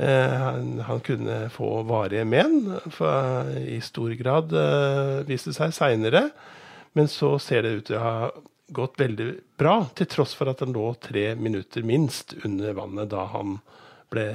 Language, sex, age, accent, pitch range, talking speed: English, male, 50-69, Norwegian, 110-145 Hz, 155 wpm